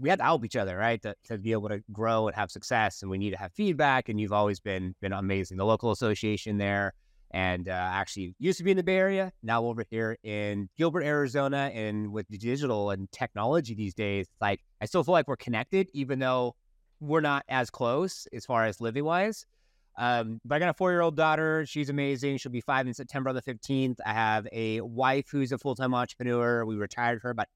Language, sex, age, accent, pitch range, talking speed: English, male, 30-49, American, 110-140 Hz, 225 wpm